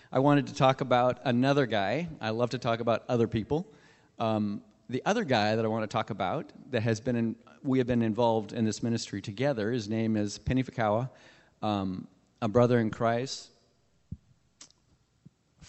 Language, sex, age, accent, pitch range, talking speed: English, male, 40-59, American, 110-135 Hz, 180 wpm